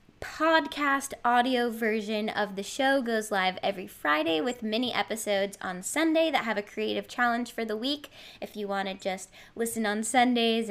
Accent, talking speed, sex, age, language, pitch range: American, 175 wpm, female, 10-29, English, 210-285 Hz